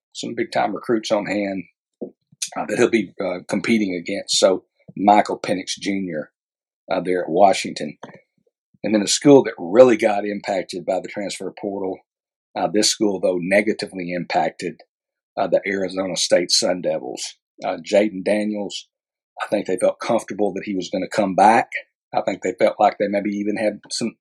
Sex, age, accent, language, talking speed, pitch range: male, 50-69, American, English, 170 wpm, 95-110 Hz